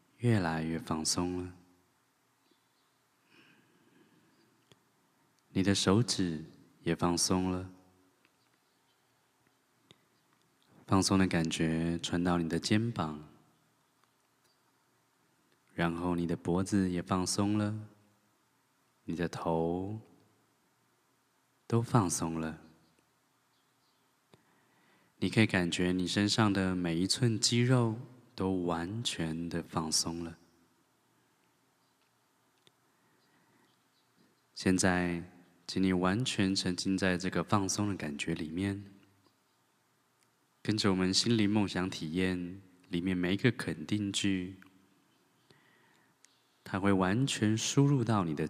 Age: 20-39